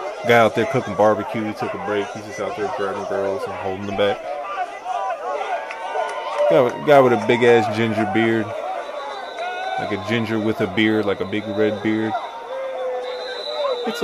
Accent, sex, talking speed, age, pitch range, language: American, male, 165 wpm, 20-39, 105-170 Hz, English